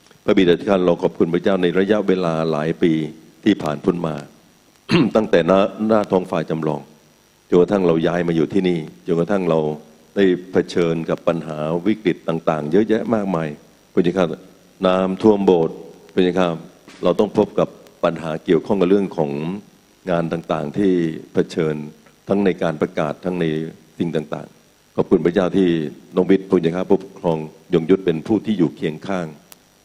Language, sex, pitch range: Thai, male, 80-95 Hz